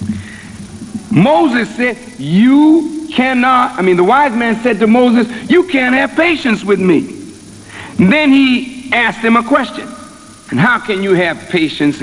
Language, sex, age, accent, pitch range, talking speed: English, male, 60-79, American, 195-270 Hz, 150 wpm